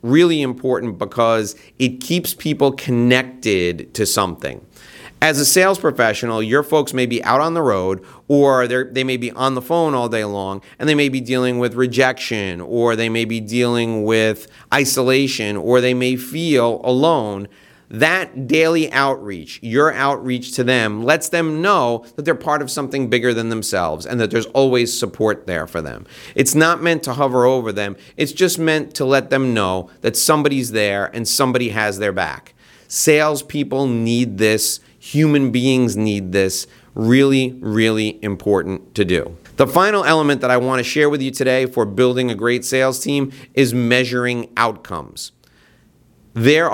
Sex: male